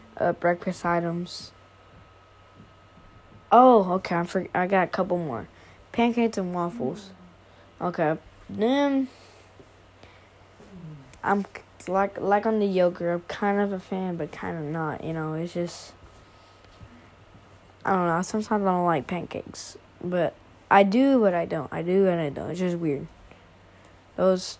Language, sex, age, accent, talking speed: English, female, 20-39, American, 145 wpm